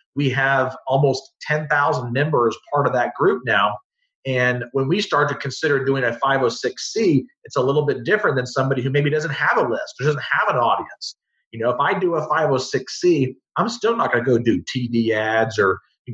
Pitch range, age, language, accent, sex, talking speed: 130-160 Hz, 40-59, English, American, male, 205 wpm